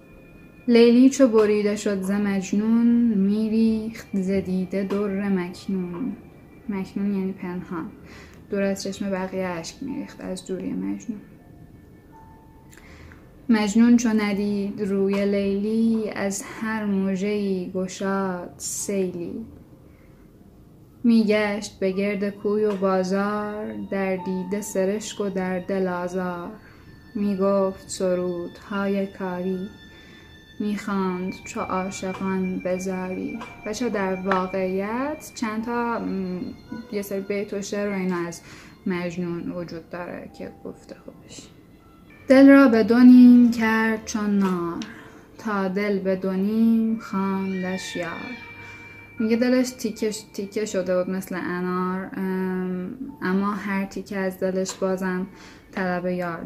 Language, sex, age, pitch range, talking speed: Persian, female, 10-29, 185-215 Hz, 105 wpm